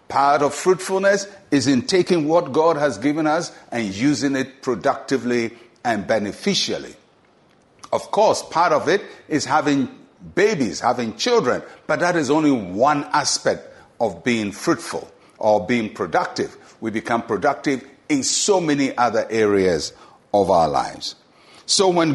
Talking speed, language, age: 140 wpm, English, 60-79